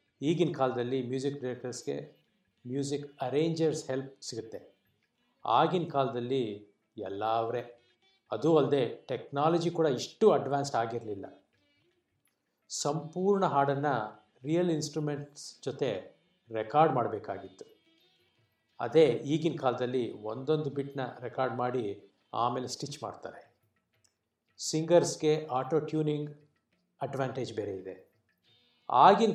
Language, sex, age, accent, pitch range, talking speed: Kannada, male, 50-69, native, 125-160 Hz, 90 wpm